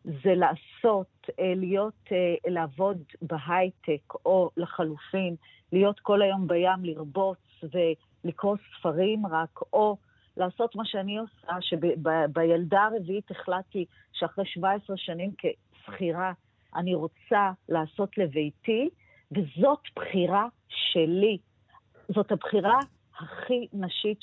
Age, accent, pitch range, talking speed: 50-69, native, 175-225 Hz, 100 wpm